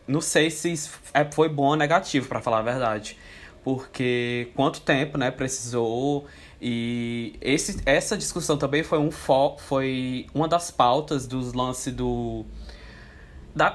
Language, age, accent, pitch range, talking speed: Portuguese, 20-39, Brazilian, 120-150 Hz, 145 wpm